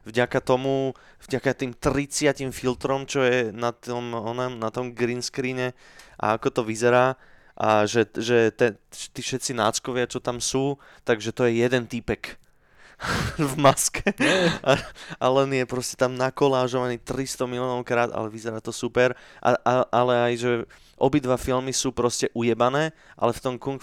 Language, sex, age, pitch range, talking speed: Slovak, male, 20-39, 120-145 Hz, 155 wpm